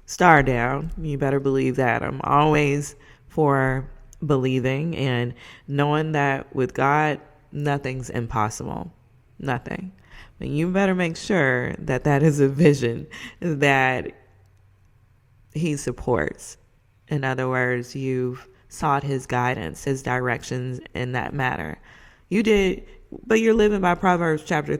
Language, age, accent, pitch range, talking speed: English, 20-39, American, 130-155 Hz, 130 wpm